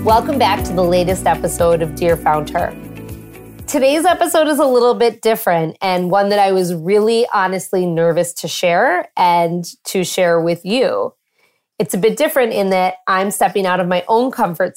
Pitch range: 175-225 Hz